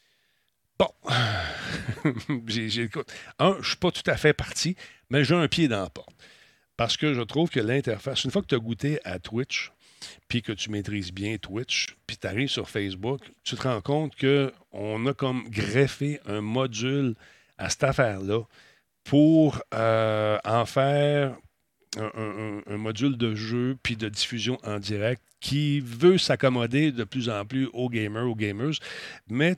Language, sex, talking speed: French, male, 165 wpm